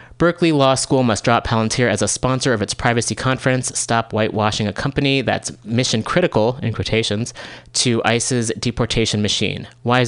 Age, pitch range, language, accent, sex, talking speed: 20-39, 110-125 Hz, English, American, male, 160 wpm